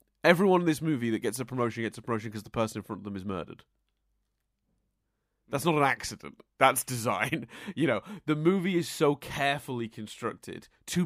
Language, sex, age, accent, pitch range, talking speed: English, male, 30-49, British, 110-150 Hz, 190 wpm